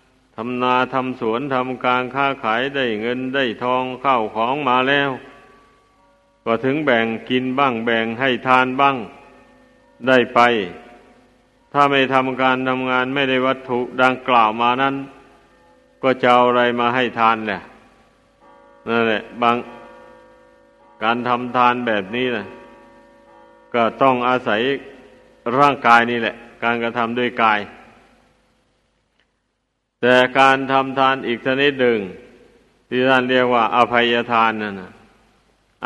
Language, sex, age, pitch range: Thai, male, 60-79, 115-130 Hz